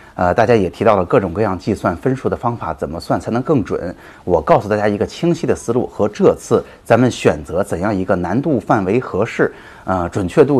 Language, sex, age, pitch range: Chinese, male, 30-49, 90-110 Hz